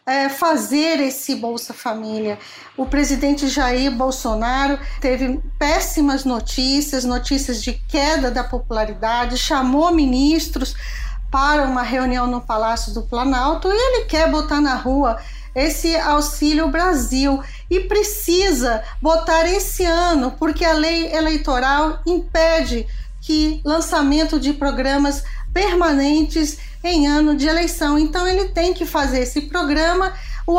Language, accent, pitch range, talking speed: Portuguese, Brazilian, 265-330 Hz, 120 wpm